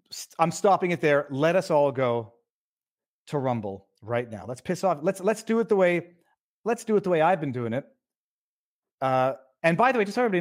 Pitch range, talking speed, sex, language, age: 135-200 Hz, 220 wpm, male, English, 40-59